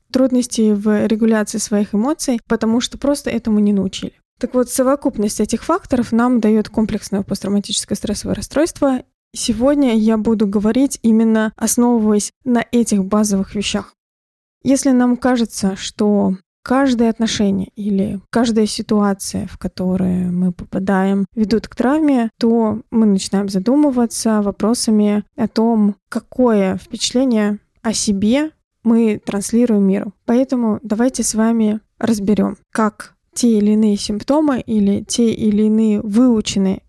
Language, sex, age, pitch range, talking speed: Russian, female, 20-39, 205-235 Hz, 125 wpm